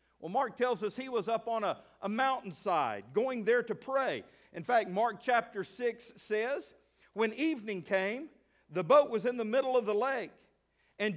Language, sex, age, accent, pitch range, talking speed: English, male, 50-69, American, 185-235 Hz, 185 wpm